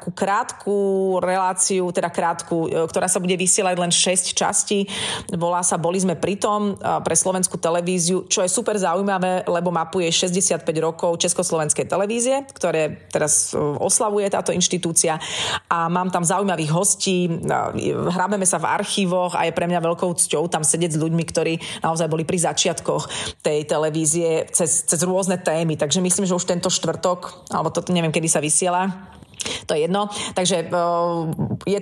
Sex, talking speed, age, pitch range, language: female, 155 wpm, 30-49, 160-185 Hz, Slovak